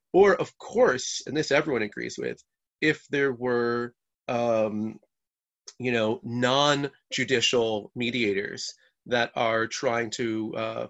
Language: English